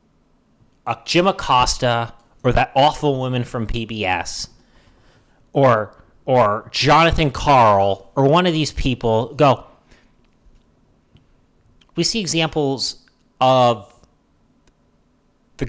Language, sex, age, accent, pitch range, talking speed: English, male, 30-49, American, 105-130 Hz, 90 wpm